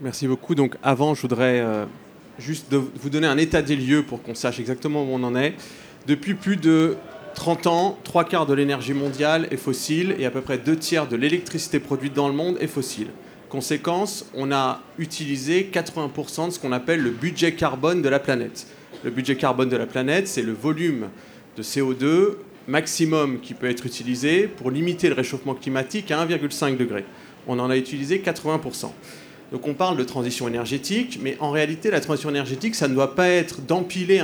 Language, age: French, 30-49